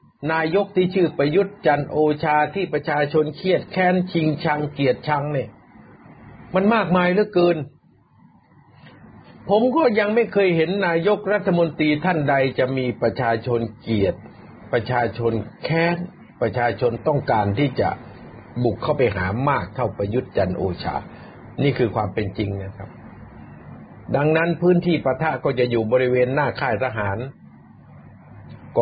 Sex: male